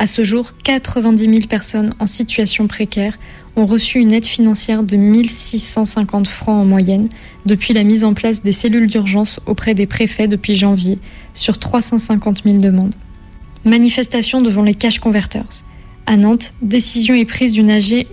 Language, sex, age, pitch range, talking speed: French, female, 20-39, 210-230 Hz, 160 wpm